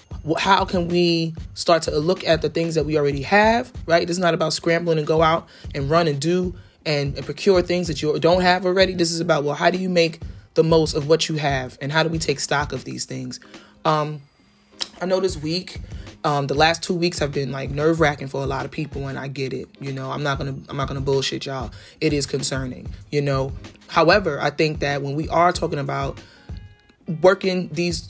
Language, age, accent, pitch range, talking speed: English, 20-39, American, 140-170 Hz, 235 wpm